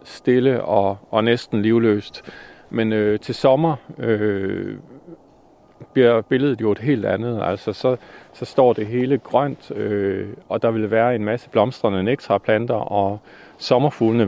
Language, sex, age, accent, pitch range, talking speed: Danish, male, 40-59, native, 105-125 Hz, 145 wpm